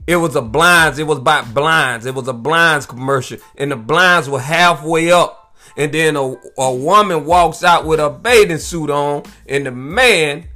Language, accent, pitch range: English, American, 155-210 Hz